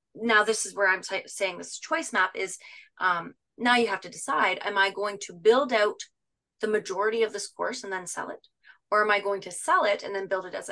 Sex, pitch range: female, 195-235 Hz